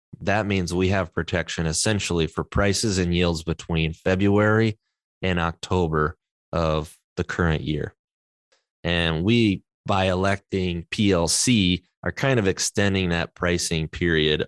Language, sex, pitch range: English, male, 80-95 Hz